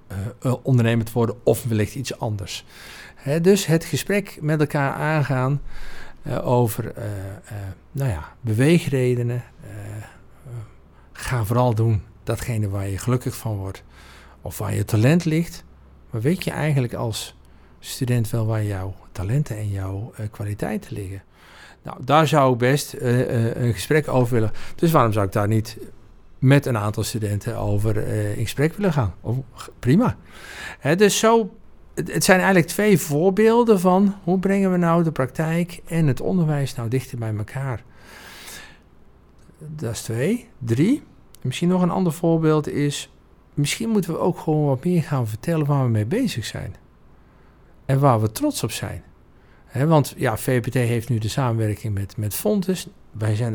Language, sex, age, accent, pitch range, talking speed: Dutch, male, 50-69, Dutch, 105-155 Hz, 155 wpm